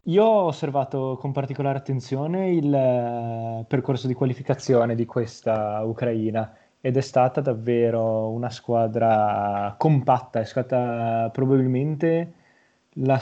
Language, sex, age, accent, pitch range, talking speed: Italian, male, 20-39, native, 115-135 Hz, 110 wpm